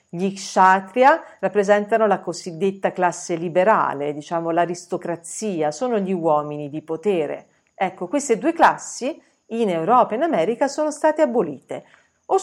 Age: 50-69